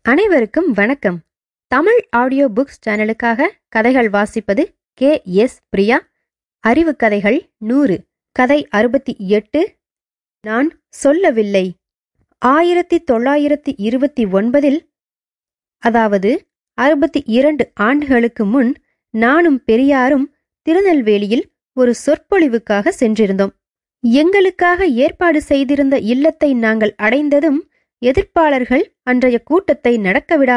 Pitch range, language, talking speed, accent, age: 235-315 Hz, English, 75 wpm, Indian, 20-39